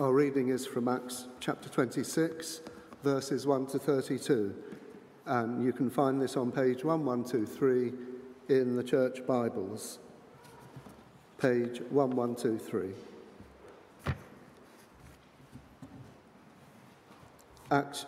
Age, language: 50-69, English